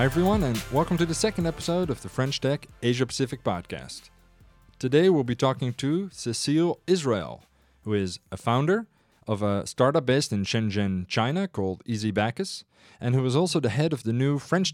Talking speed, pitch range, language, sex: 185 wpm, 105-130 Hz, English, male